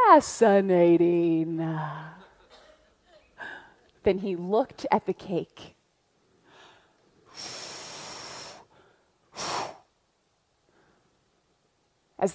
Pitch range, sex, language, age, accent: 200-315 Hz, female, English, 30-49, American